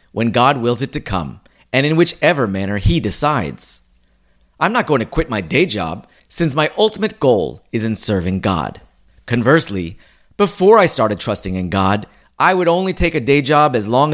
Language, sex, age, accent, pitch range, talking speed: English, male, 30-49, American, 95-160 Hz, 185 wpm